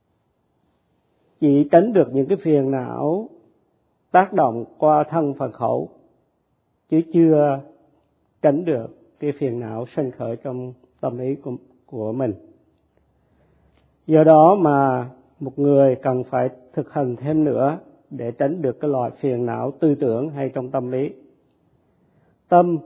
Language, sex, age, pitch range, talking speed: Vietnamese, male, 50-69, 130-155 Hz, 135 wpm